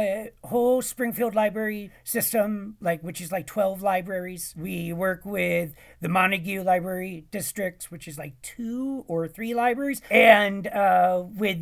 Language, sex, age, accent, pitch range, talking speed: English, male, 40-59, American, 170-230 Hz, 145 wpm